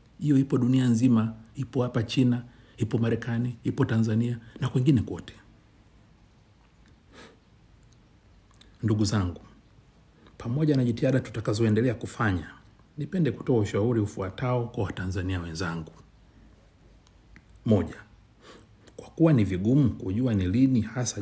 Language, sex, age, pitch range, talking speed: Swahili, male, 60-79, 100-125 Hz, 105 wpm